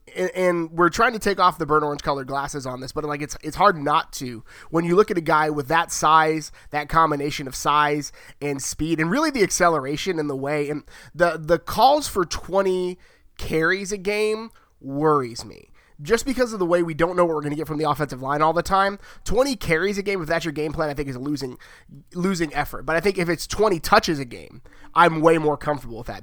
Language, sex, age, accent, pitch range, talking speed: English, male, 30-49, American, 145-180 Hz, 235 wpm